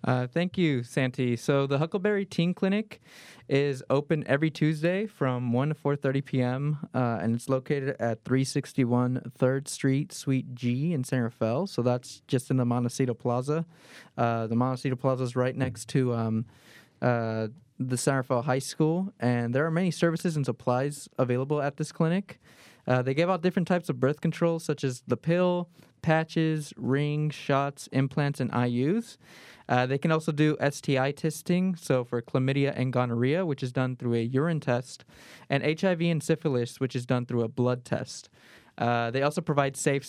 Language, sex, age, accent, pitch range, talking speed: English, male, 20-39, American, 125-155 Hz, 175 wpm